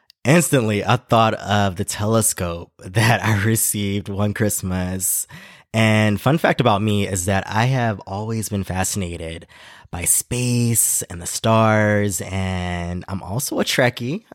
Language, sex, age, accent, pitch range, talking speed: English, male, 20-39, American, 100-130 Hz, 140 wpm